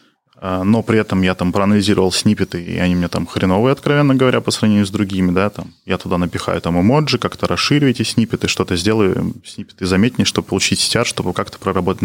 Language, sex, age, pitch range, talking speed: Russian, male, 20-39, 90-115 Hz, 195 wpm